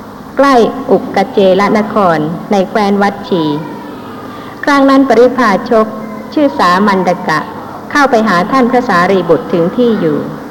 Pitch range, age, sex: 190-250 Hz, 60-79, female